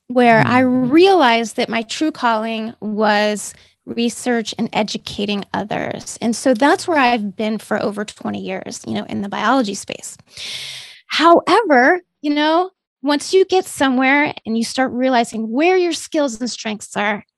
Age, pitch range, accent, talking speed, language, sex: 20-39, 220-290 Hz, American, 155 wpm, English, female